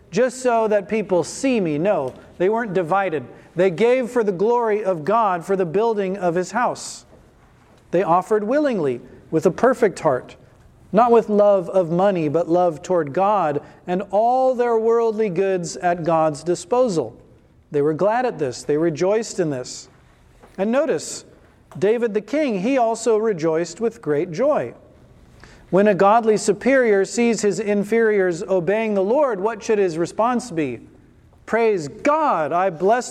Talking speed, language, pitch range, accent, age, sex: 155 wpm, English, 175-225 Hz, American, 40-59, male